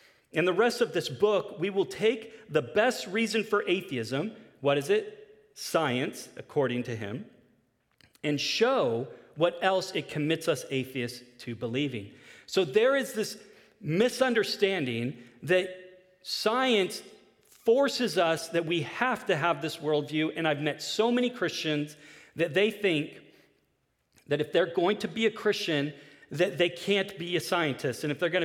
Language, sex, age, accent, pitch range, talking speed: English, male, 40-59, American, 130-190 Hz, 155 wpm